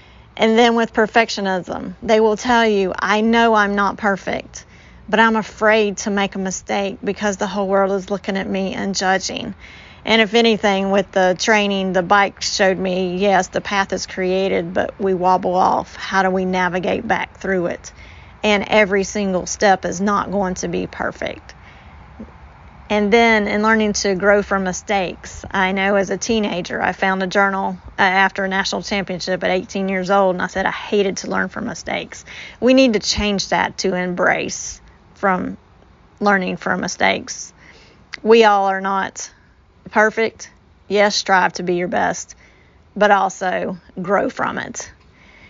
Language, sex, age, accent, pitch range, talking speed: English, female, 30-49, American, 190-215 Hz, 165 wpm